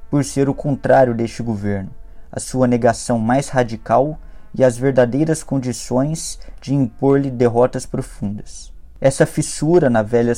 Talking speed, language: 135 wpm, Portuguese